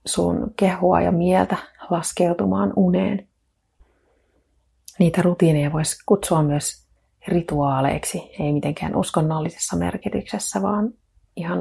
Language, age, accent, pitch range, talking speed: Finnish, 30-49, native, 145-180 Hz, 95 wpm